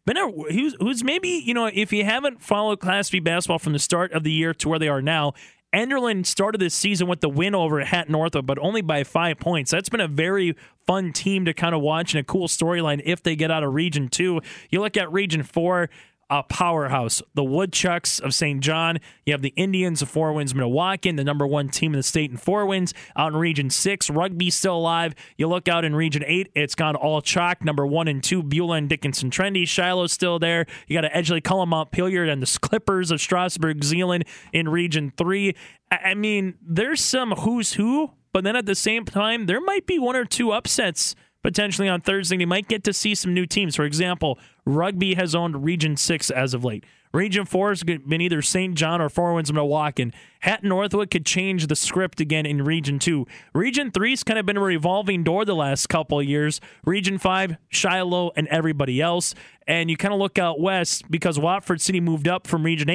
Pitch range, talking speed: 155-190 Hz, 215 wpm